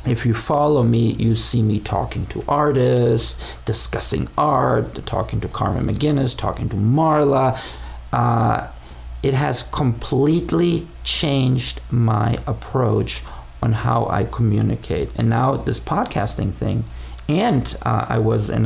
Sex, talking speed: male, 130 wpm